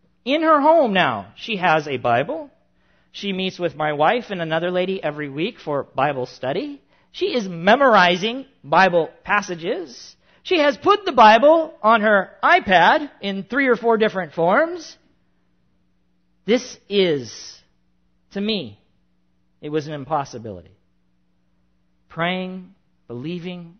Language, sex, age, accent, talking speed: English, male, 40-59, American, 125 wpm